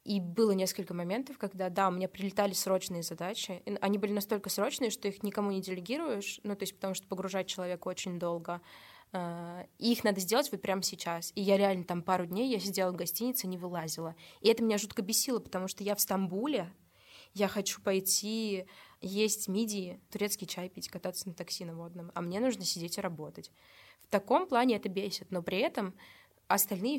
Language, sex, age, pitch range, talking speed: Russian, female, 20-39, 185-215 Hz, 195 wpm